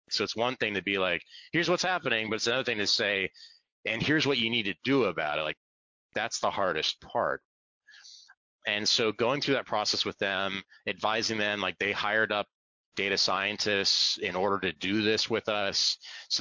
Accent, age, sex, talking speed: American, 30-49, male, 200 wpm